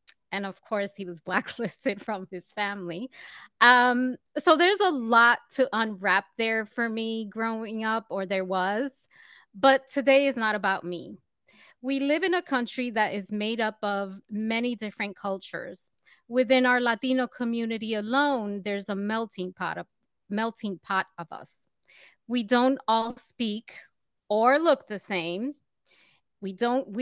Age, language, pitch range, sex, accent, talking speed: 30-49, English, 200-255 Hz, female, American, 150 wpm